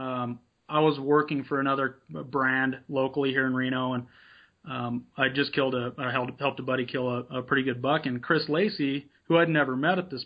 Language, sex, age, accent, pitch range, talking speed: English, male, 30-49, American, 130-145 Hz, 205 wpm